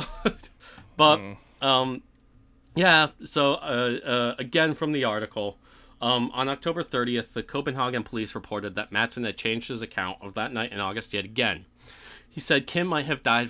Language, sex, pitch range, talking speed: English, male, 100-125 Hz, 165 wpm